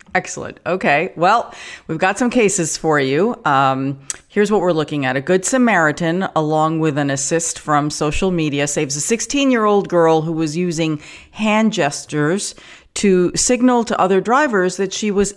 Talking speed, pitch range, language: 165 wpm, 145-190 Hz, English